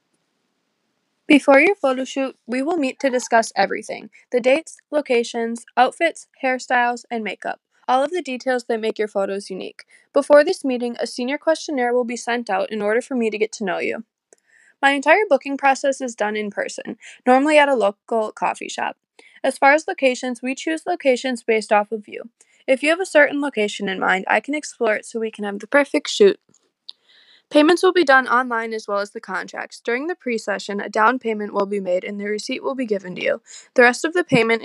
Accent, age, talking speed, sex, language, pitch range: American, 20-39, 210 wpm, female, English, 220-275 Hz